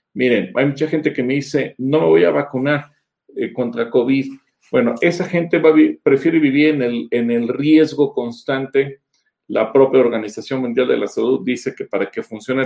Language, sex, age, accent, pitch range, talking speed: Spanish, male, 40-59, Mexican, 120-150 Hz, 195 wpm